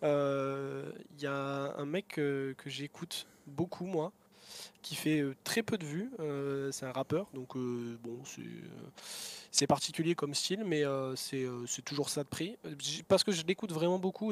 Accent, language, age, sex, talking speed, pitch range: French, French, 20-39, male, 190 wpm, 130-160 Hz